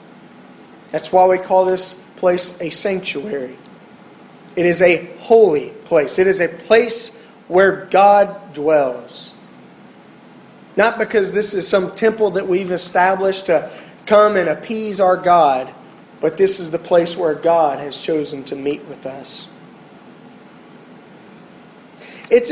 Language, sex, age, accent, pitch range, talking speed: English, male, 30-49, American, 170-210 Hz, 130 wpm